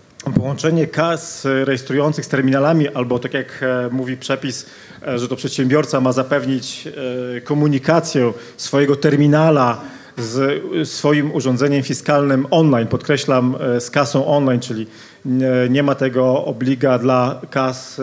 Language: Polish